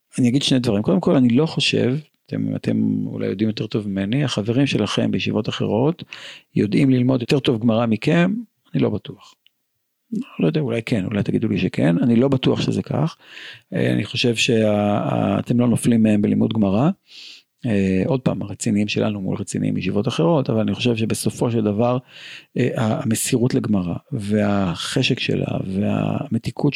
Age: 50-69